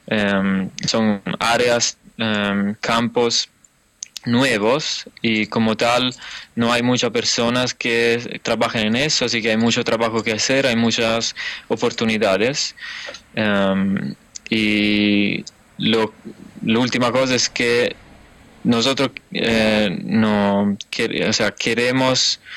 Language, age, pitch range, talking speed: Spanish, 20-39, 110-120 Hz, 115 wpm